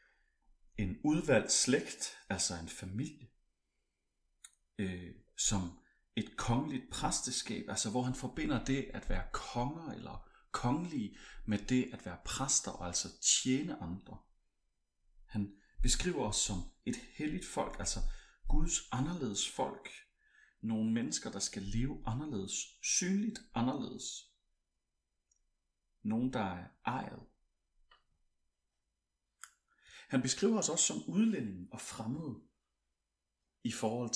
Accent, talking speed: native, 110 wpm